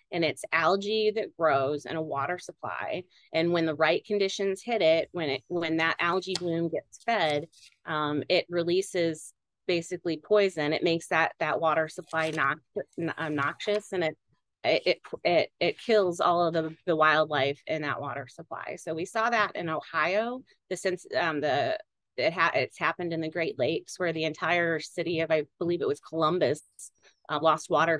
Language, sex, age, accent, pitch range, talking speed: English, female, 30-49, American, 160-200 Hz, 180 wpm